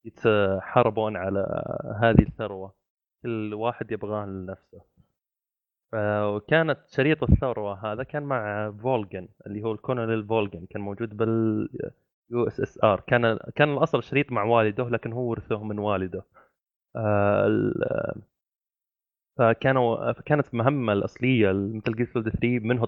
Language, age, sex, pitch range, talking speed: Arabic, 20-39, male, 105-125 Hz, 115 wpm